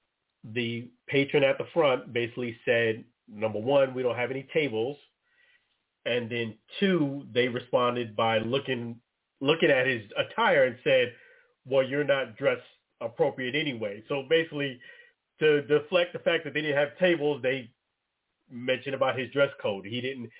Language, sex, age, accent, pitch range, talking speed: English, male, 40-59, American, 120-150 Hz, 155 wpm